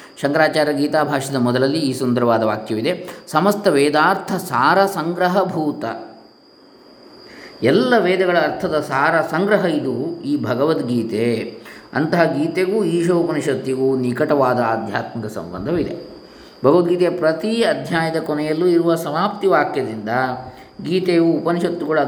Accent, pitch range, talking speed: native, 140-170 Hz, 90 wpm